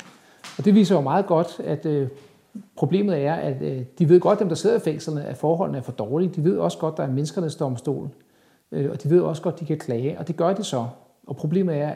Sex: male